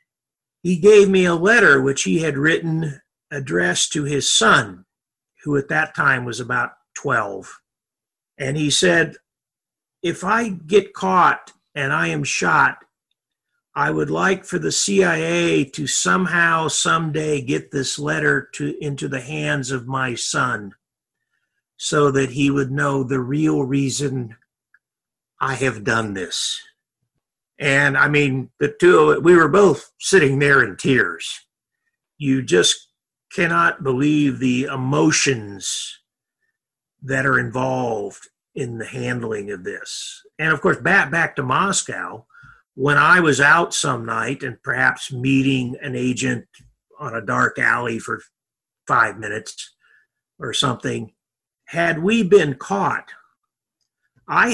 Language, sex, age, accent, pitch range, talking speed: English, male, 50-69, American, 130-170 Hz, 135 wpm